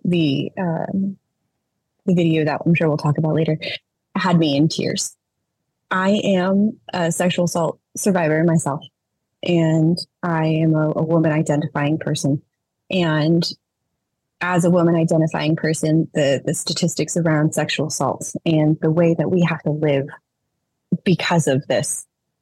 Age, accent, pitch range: 20-39, American, 155-180 Hz